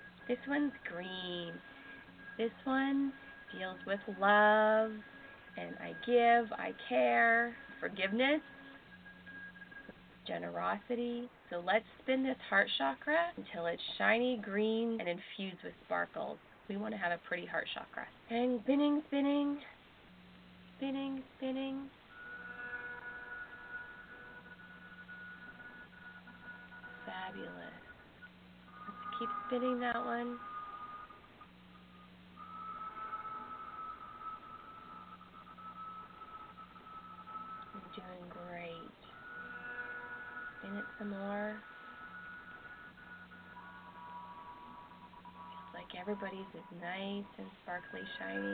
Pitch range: 180-275 Hz